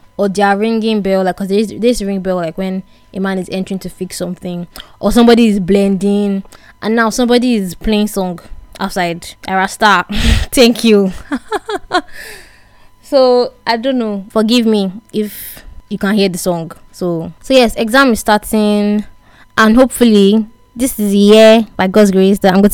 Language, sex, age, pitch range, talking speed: English, female, 20-39, 190-225 Hz, 170 wpm